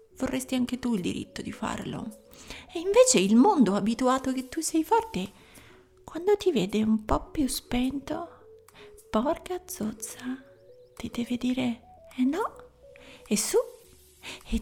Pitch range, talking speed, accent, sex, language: 220-320 Hz, 135 wpm, native, female, Italian